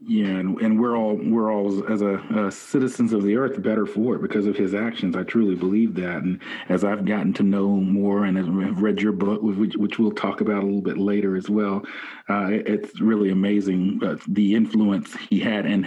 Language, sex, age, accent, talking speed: English, male, 40-59, American, 215 wpm